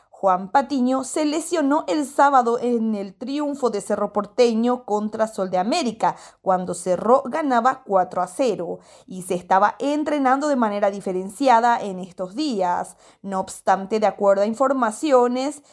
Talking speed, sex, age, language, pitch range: 140 wpm, female, 20-39, Spanish, 195-260 Hz